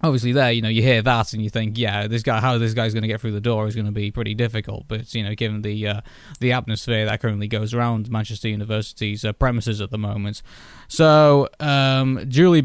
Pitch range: 110-135 Hz